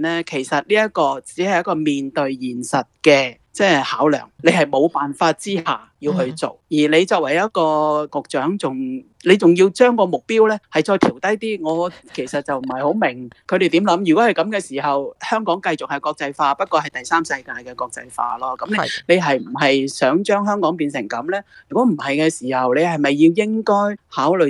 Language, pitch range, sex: Chinese, 140-190 Hz, male